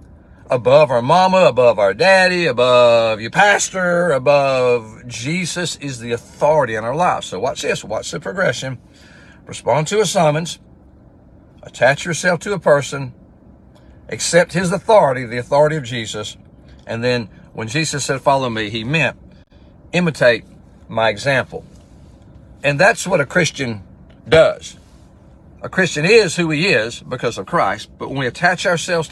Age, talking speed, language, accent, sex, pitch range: 60-79, 145 wpm, English, American, male, 115-180 Hz